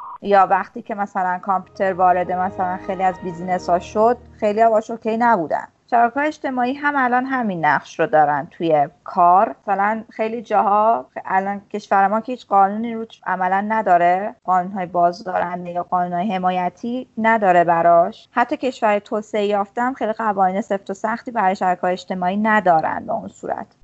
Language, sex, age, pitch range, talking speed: Persian, female, 30-49, 185-235 Hz, 160 wpm